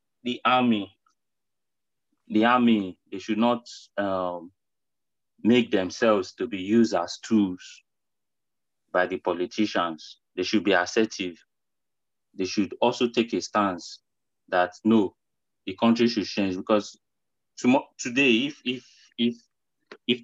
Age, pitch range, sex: 30-49, 95-115 Hz, male